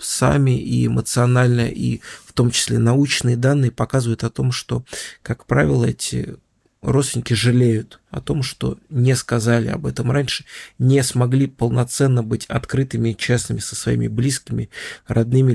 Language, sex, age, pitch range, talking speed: Russian, male, 20-39, 115-130 Hz, 140 wpm